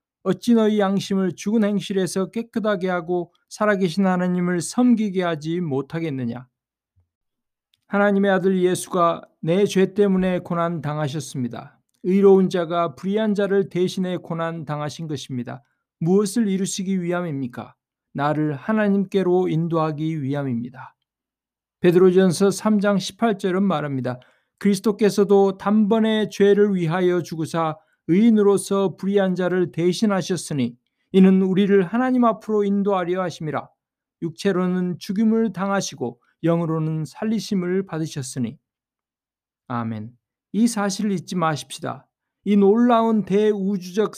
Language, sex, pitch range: Korean, male, 160-200 Hz